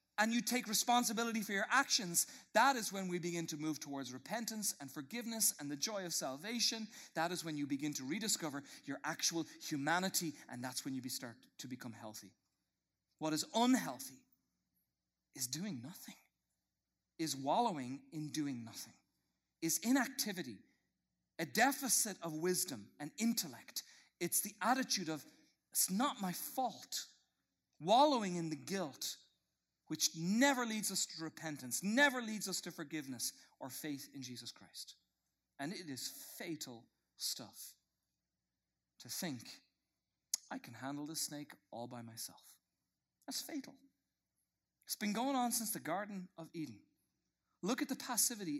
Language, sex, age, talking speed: English, male, 40-59, 145 wpm